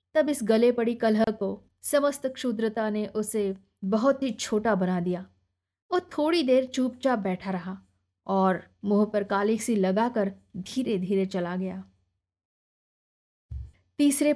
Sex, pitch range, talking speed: female, 190-245 Hz, 135 wpm